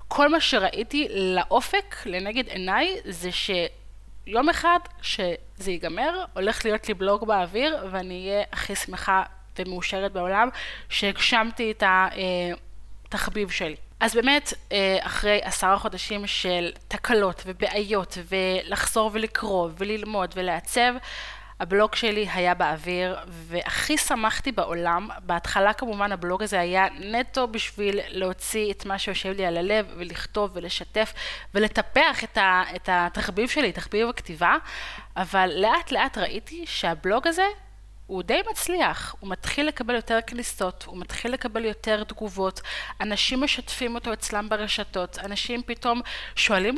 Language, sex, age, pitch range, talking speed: Hebrew, female, 20-39, 185-235 Hz, 125 wpm